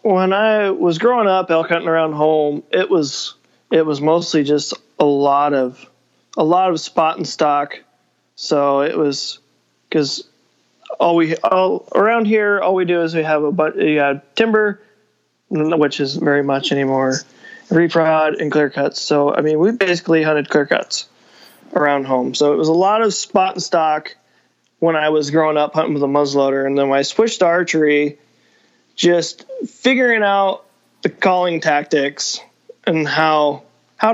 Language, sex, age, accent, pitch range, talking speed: English, male, 20-39, American, 145-175 Hz, 170 wpm